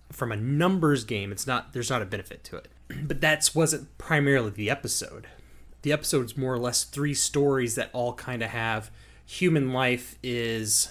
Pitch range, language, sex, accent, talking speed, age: 115-145 Hz, English, male, American, 180 wpm, 30-49